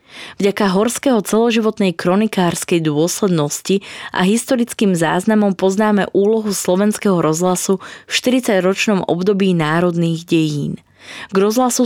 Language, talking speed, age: Slovak, 95 wpm, 20-39